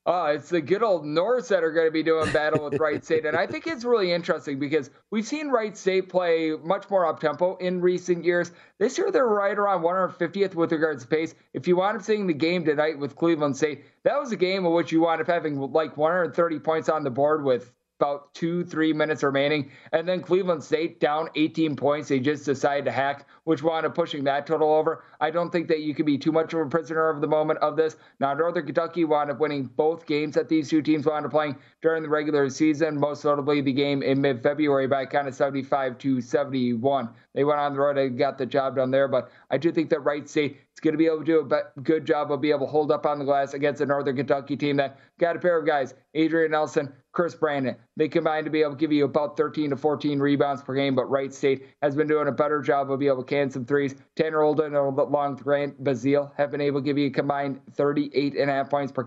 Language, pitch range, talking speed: English, 140-165 Hz, 250 wpm